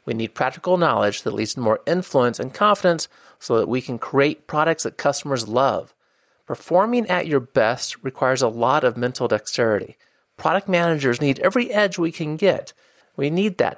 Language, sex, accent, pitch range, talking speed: English, male, American, 120-165 Hz, 180 wpm